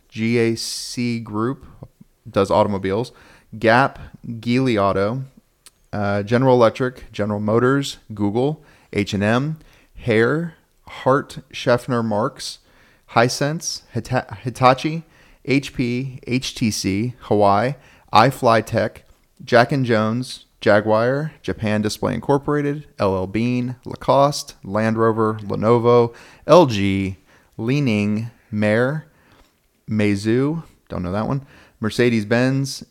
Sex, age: male, 30-49